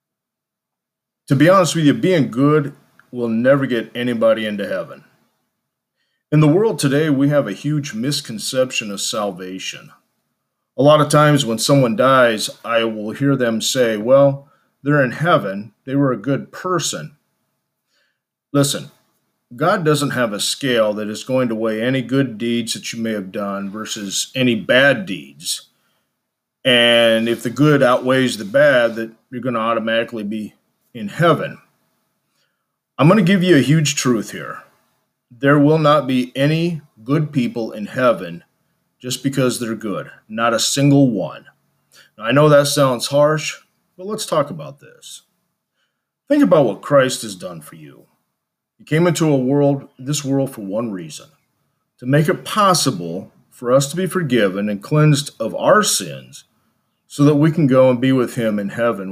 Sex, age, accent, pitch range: male, 40-59, American, 115-150 Hz